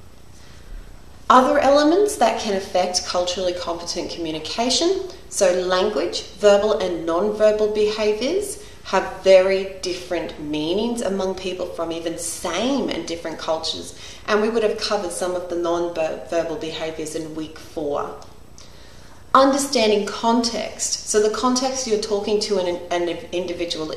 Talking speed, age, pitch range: 125 wpm, 30-49, 165-215 Hz